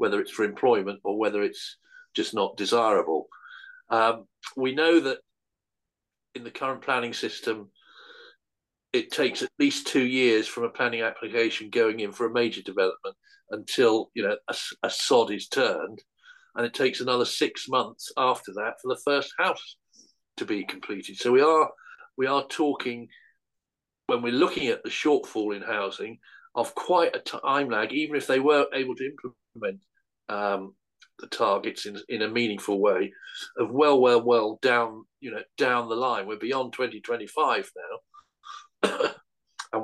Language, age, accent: English, 50-69, British